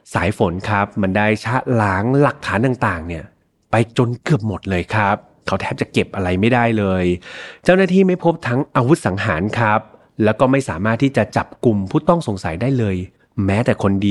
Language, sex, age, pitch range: Thai, male, 30-49, 105-150 Hz